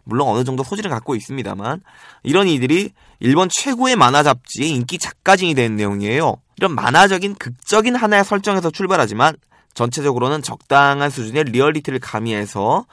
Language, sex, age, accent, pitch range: Korean, male, 20-39, native, 120-180 Hz